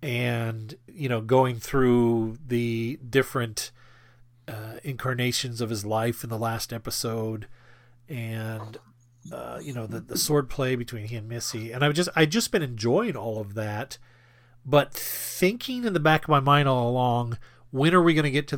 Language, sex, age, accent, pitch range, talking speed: English, male, 40-59, American, 120-150 Hz, 180 wpm